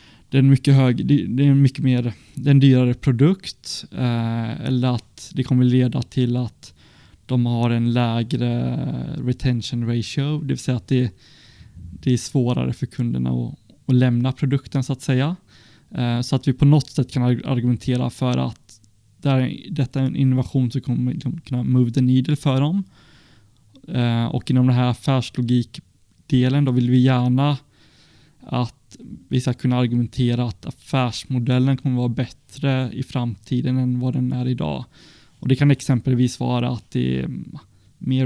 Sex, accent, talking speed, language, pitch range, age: male, native, 165 wpm, Swedish, 120-135 Hz, 20-39